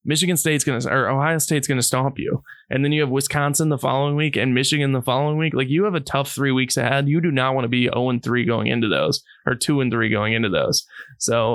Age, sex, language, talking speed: 20-39, male, English, 260 wpm